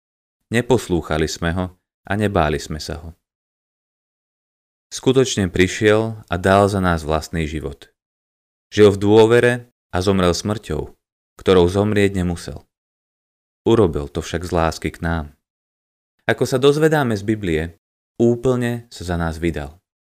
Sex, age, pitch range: male, 30-49, 85-115 Hz